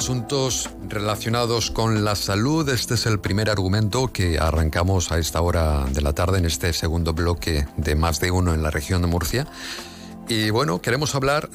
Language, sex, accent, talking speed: Spanish, male, Spanish, 180 wpm